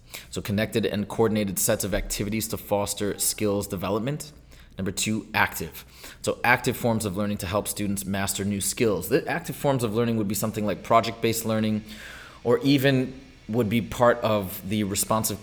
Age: 30-49